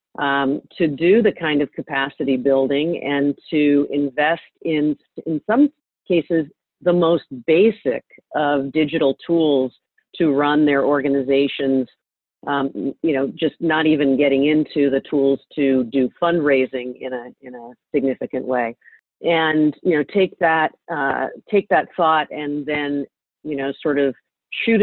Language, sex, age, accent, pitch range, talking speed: English, female, 40-59, American, 140-160 Hz, 145 wpm